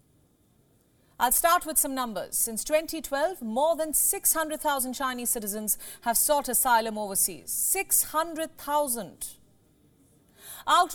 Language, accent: English, Indian